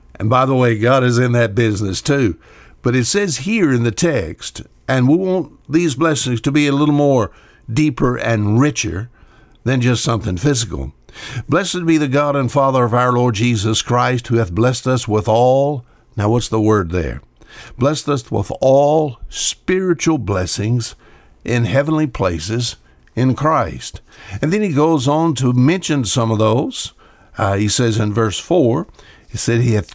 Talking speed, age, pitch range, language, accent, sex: 175 wpm, 60-79, 110-140 Hz, English, American, male